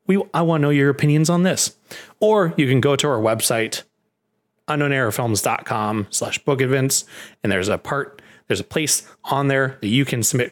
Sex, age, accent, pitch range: male, 30-49, American, 115-155 Hz